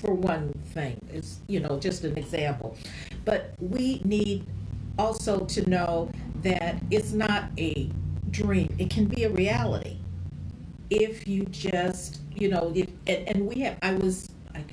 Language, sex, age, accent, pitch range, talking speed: English, female, 50-69, American, 165-205 Hz, 155 wpm